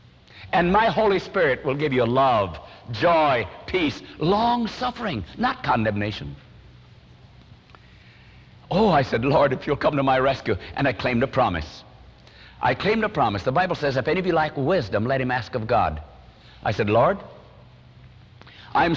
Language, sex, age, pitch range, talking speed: English, male, 60-79, 105-170 Hz, 160 wpm